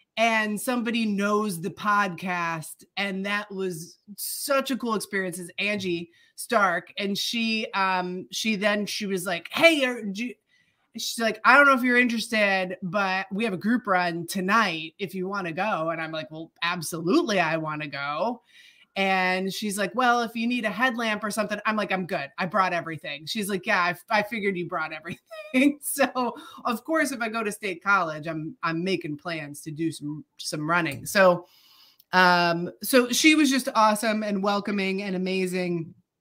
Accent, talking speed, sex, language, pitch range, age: American, 185 wpm, female, English, 175-225 Hz, 30-49